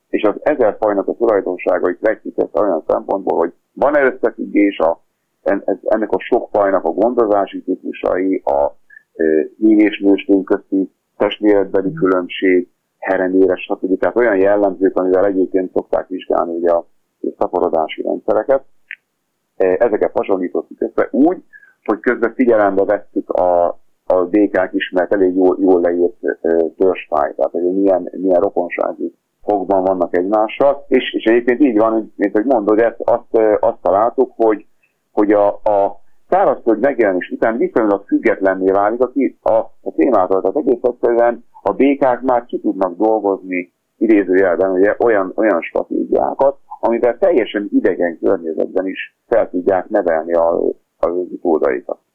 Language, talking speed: Hungarian, 130 wpm